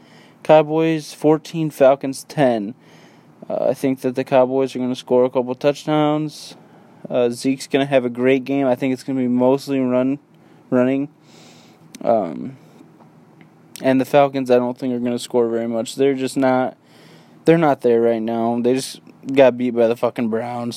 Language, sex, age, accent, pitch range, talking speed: English, male, 20-39, American, 120-135 Hz, 180 wpm